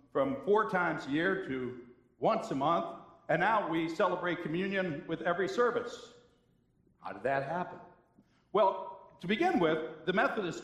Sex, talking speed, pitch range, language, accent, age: male, 150 wpm, 140-215 Hz, English, American, 60-79